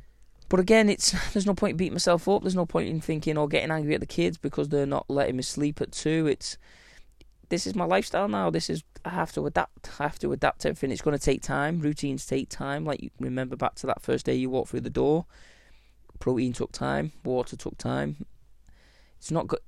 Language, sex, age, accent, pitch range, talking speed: English, male, 20-39, British, 110-150 Hz, 230 wpm